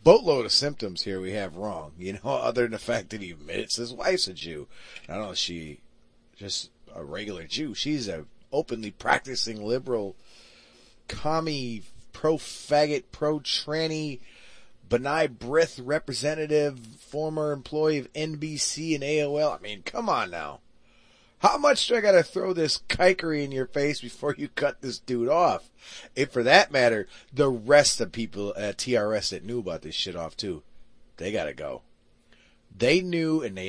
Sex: male